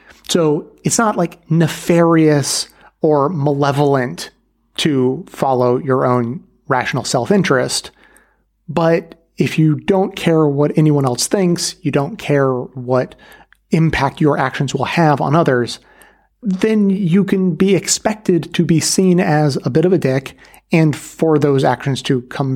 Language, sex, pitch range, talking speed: English, male, 130-170 Hz, 140 wpm